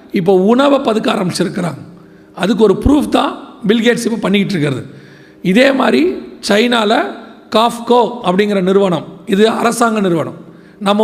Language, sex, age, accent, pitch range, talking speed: Tamil, male, 40-59, native, 185-235 Hz, 115 wpm